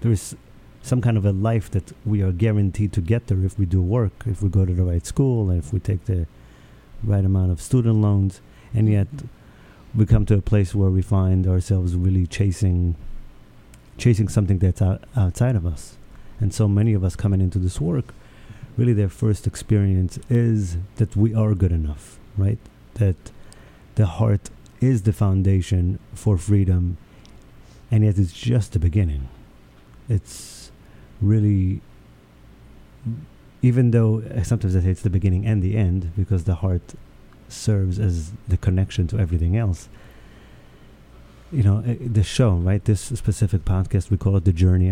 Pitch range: 90-110 Hz